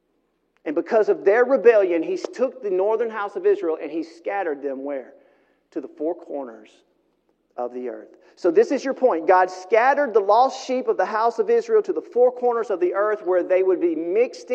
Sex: male